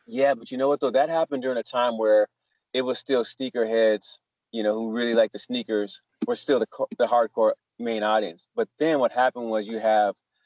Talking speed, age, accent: 220 wpm, 20-39, American